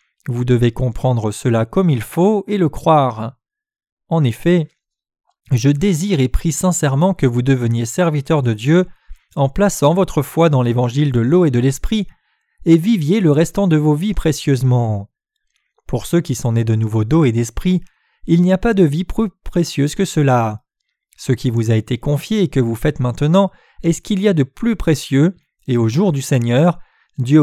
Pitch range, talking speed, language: 125-180 Hz, 190 wpm, French